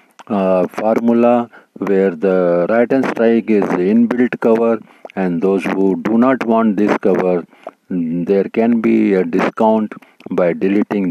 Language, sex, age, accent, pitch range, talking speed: Hindi, male, 50-69, native, 95-115 Hz, 140 wpm